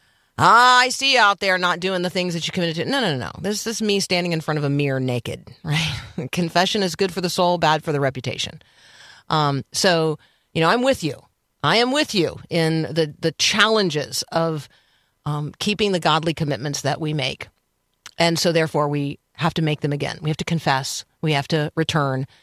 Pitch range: 150-200 Hz